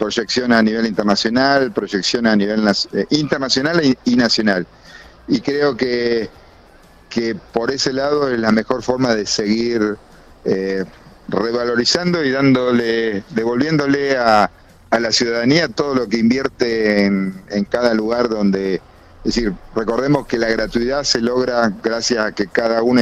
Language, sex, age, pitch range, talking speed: Spanish, male, 40-59, 105-125 Hz, 145 wpm